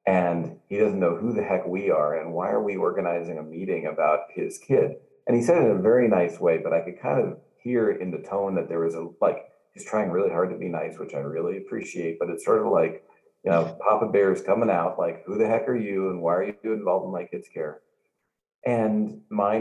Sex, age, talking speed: male, 40-59, 250 wpm